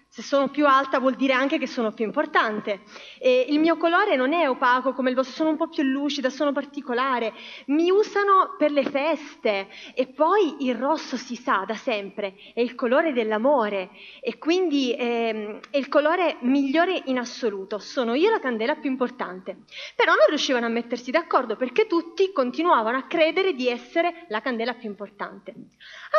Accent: native